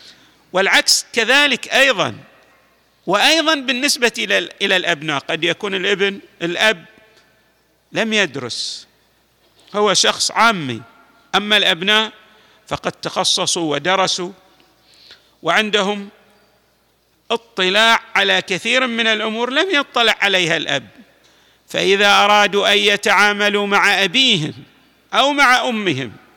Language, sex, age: Arabic, male, 50-69